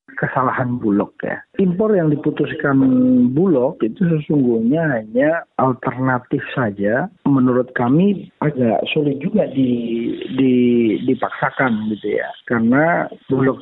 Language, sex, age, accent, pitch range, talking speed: Indonesian, male, 40-59, native, 155-235 Hz, 105 wpm